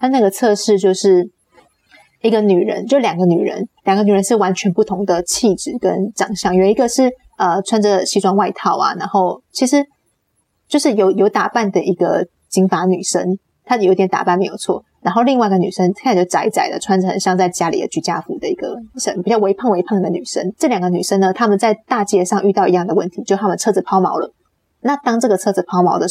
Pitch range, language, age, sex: 185-220 Hz, Chinese, 20-39, female